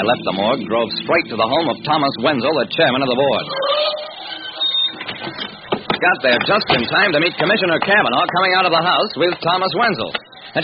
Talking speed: 195 wpm